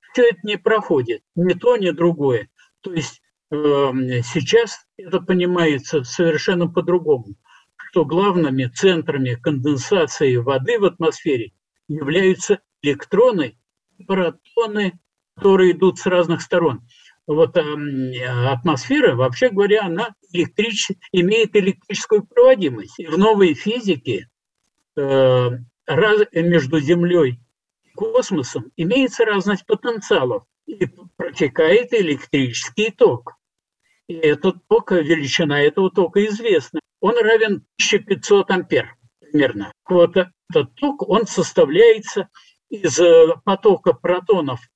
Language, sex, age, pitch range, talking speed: Russian, male, 50-69, 155-220 Hz, 105 wpm